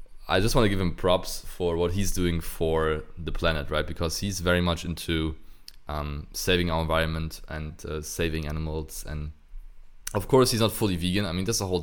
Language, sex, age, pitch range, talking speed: English, male, 20-39, 80-90 Hz, 205 wpm